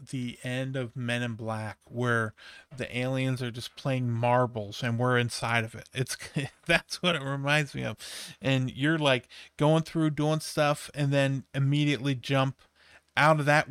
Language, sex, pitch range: English, male, 120-145 Hz